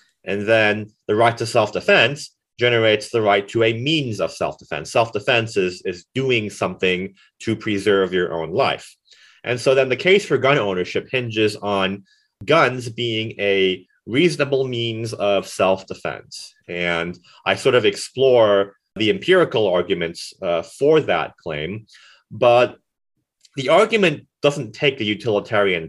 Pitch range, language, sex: 100-135 Hz, English, male